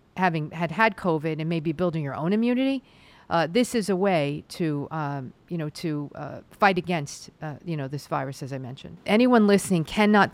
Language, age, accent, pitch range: English, 50-69, American, 160-195 Hz